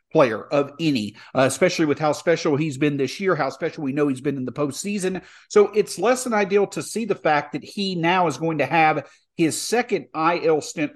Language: English